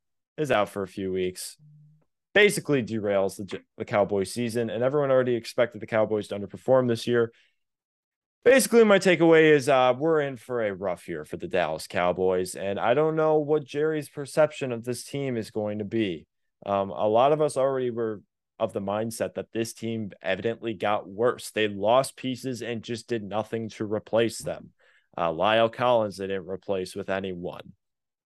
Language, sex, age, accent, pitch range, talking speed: English, male, 20-39, American, 105-140 Hz, 180 wpm